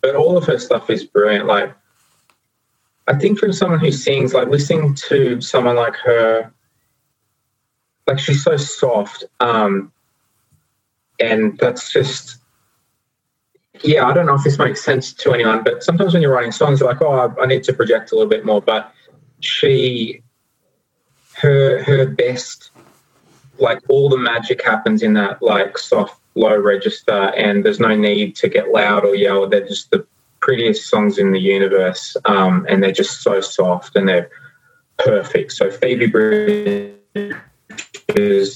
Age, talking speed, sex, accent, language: 20-39, 155 wpm, male, Australian, English